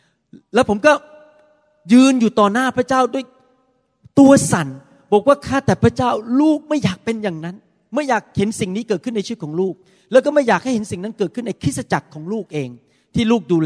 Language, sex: Thai, male